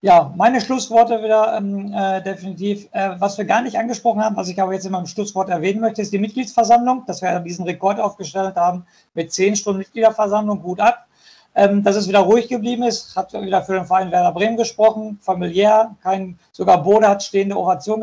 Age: 50-69